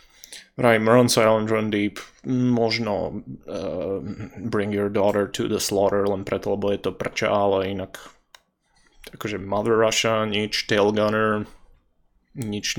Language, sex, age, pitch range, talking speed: Slovak, male, 20-39, 105-120 Hz, 135 wpm